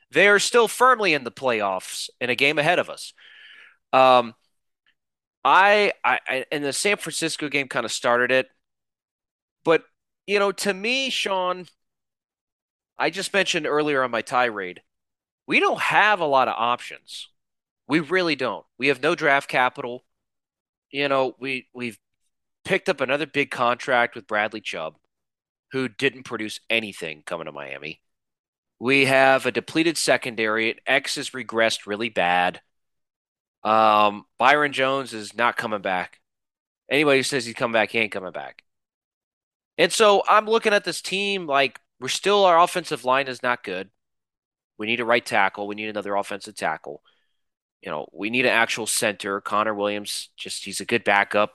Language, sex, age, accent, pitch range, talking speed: English, male, 30-49, American, 110-165 Hz, 160 wpm